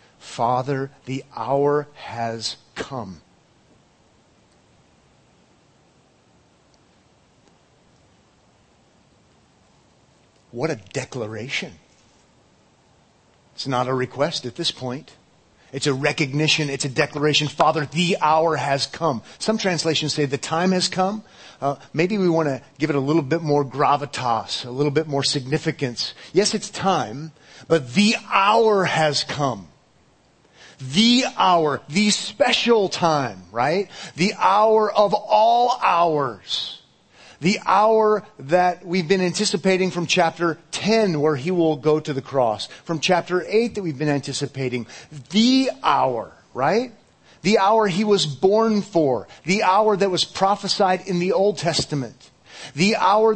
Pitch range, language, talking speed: 145-200 Hz, English, 125 wpm